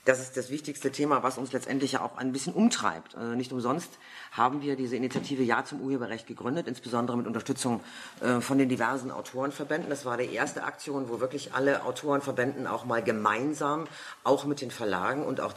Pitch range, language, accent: 125-150 Hz, German, German